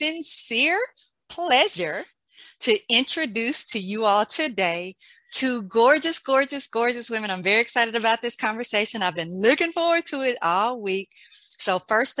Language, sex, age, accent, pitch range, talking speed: English, female, 40-59, American, 205-255 Hz, 145 wpm